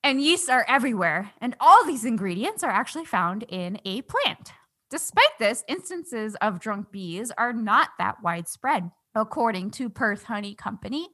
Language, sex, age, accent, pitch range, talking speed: English, female, 10-29, American, 195-265 Hz, 155 wpm